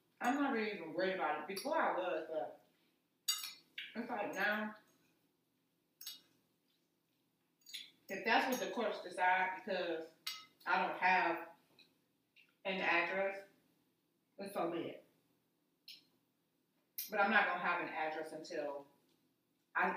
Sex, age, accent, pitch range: female, 40-59, American, 155-195 Hz